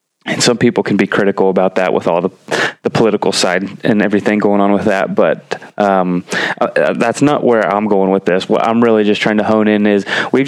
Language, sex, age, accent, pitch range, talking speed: English, male, 30-49, American, 100-115 Hz, 230 wpm